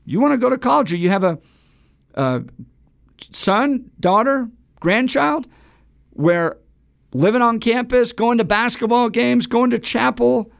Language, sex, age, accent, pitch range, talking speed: English, male, 50-69, American, 170-240 Hz, 140 wpm